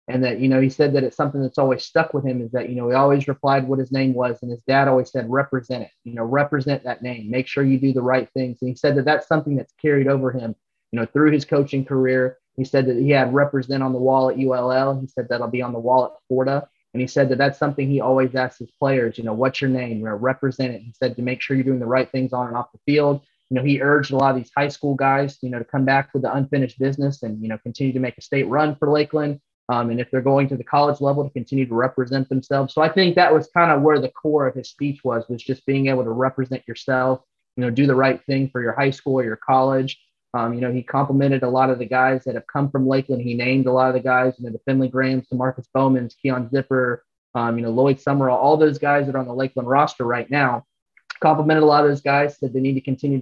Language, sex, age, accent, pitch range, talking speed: English, male, 20-39, American, 125-140 Hz, 285 wpm